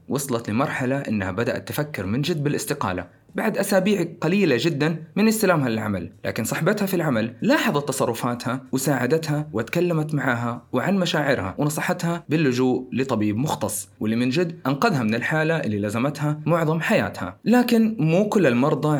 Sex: male